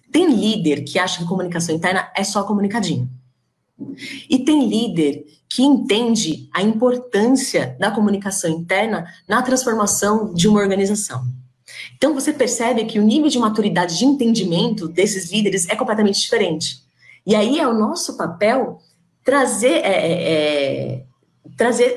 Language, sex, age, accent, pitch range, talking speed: Portuguese, female, 20-39, Brazilian, 160-225 Hz, 130 wpm